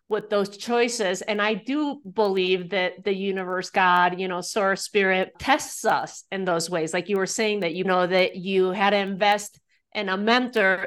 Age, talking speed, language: 40-59, 195 wpm, English